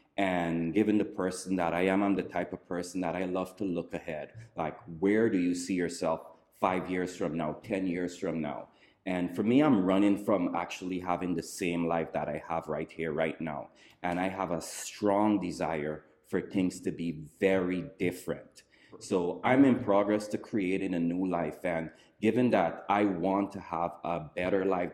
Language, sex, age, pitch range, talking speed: English, male, 30-49, 85-100 Hz, 195 wpm